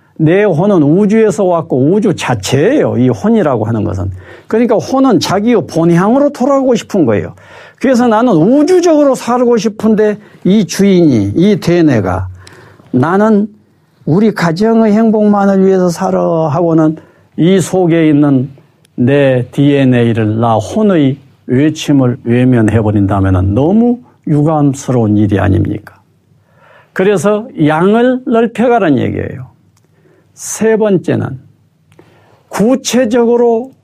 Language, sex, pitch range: Korean, male, 125-200 Hz